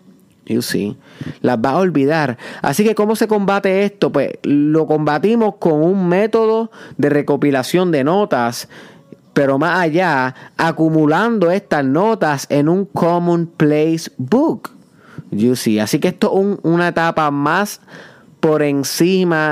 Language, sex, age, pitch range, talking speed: Spanish, male, 30-49, 130-175 Hz, 130 wpm